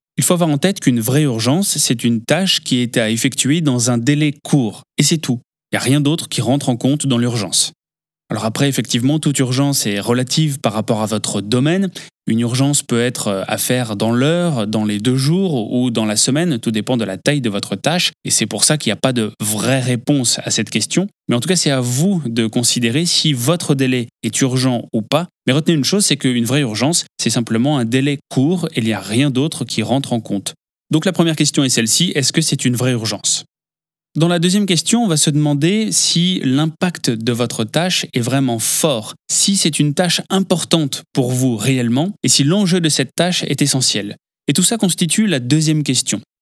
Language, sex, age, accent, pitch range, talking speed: French, male, 20-39, French, 120-160 Hz, 225 wpm